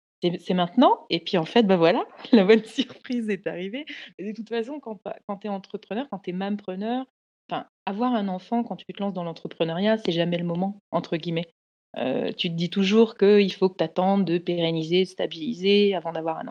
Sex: female